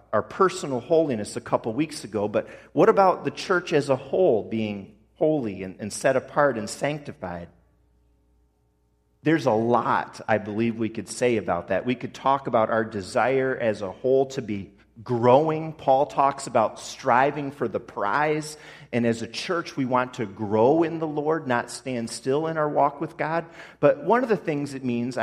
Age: 40-59